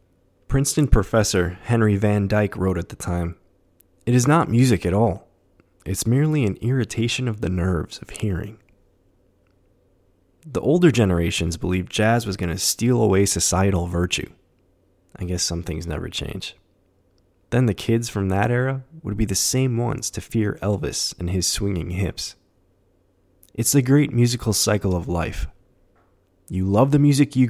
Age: 20-39